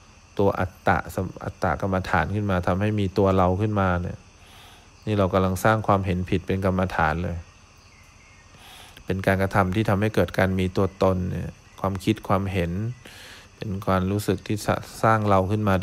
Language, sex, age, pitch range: English, male, 20-39, 95-105 Hz